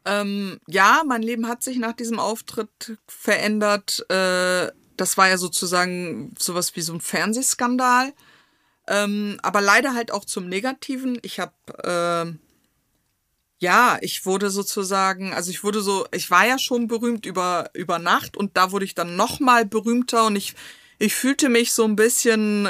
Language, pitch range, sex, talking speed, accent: German, 190-240 Hz, female, 160 wpm, German